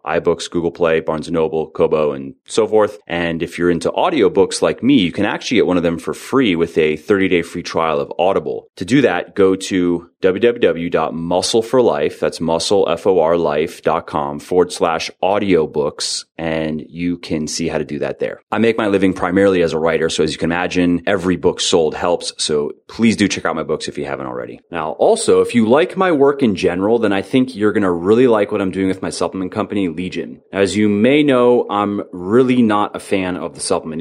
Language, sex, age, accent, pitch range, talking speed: English, male, 30-49, American, 90-125 Hz, 205 wpm